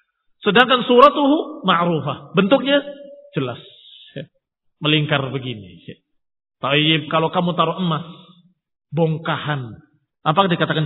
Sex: male